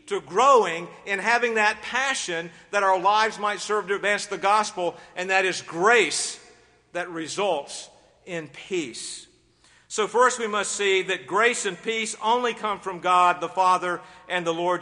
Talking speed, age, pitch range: 165 wpm, 50-69, 180-230 Hz